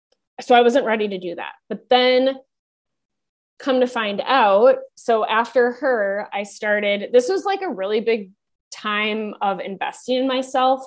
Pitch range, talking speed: 200-265 Hz, 160 wpm